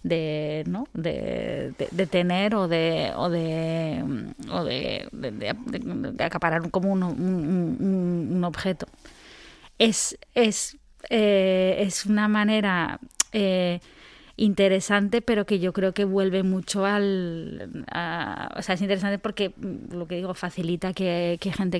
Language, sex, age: Spanish, female, 20-39